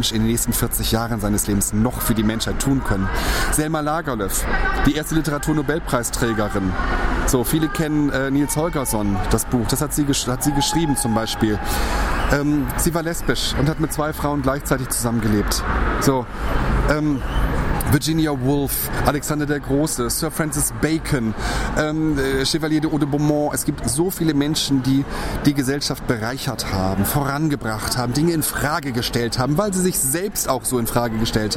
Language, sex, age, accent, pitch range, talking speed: German, male, 30-49, German, 115-150 Hz, 165 wpm